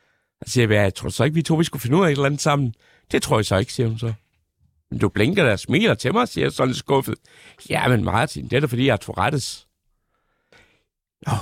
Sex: male